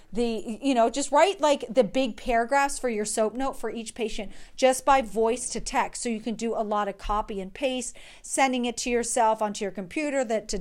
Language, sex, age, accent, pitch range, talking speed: English, female, 40-59, American, 205-265 Hz, 225 wpm